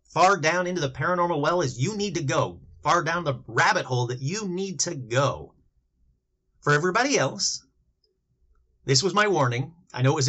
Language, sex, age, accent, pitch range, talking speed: English, male, 30-49, American, 125-175 Hz, 185 wpm